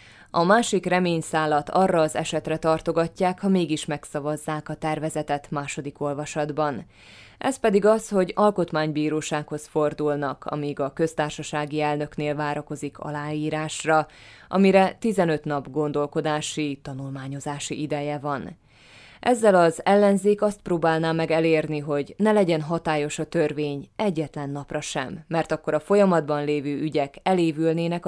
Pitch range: 150-180 Hz